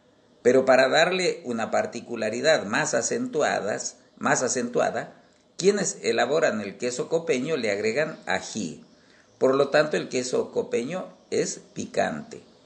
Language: Spanish